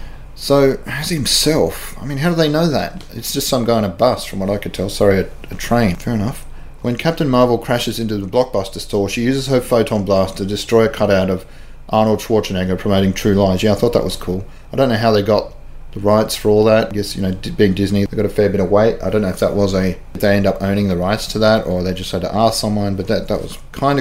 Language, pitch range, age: English, 95-115 Hz, 30-49